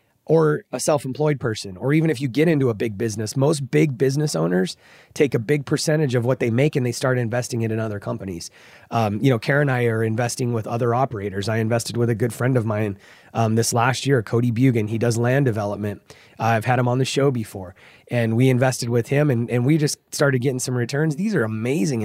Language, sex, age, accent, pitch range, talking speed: English, male, 30-49, American, 115-140 Hz, 235 wpm